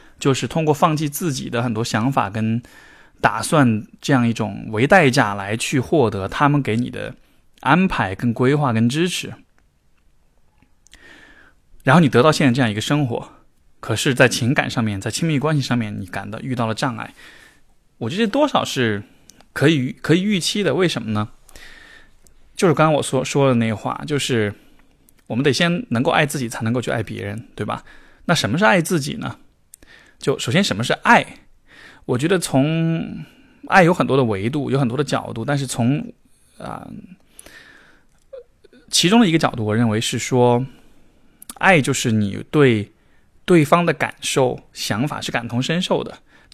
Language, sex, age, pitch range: Chinese, male, 20-39, 115-150 Hz